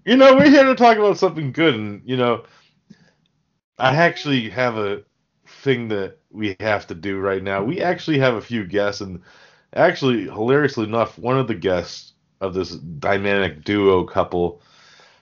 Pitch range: 90-140 Hz